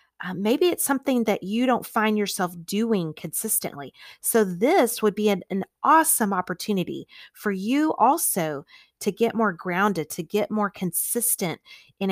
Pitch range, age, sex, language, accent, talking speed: 175-225 Hz, 30-49, female, English, American, 155 wpm